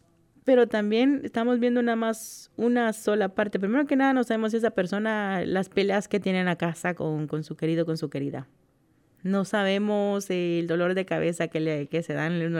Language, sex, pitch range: English, female, 160-215 Hz